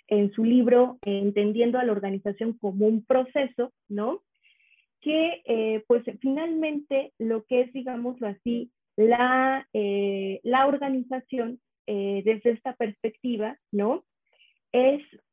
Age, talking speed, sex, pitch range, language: 30-49, 115 wpm, female, 215-270 Hz, Spanish